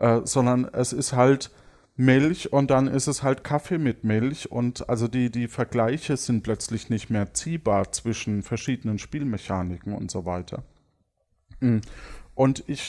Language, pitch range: German, 110-135 Hz